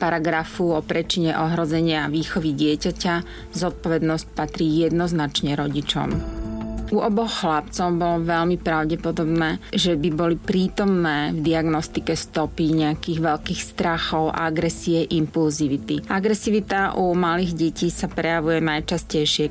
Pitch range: 155-180 Hz